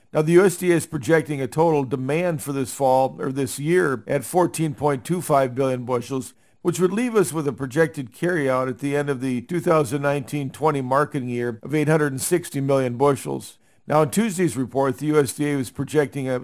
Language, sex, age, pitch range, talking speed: English, male, 50-69, 130-155 Hz, 170 wpm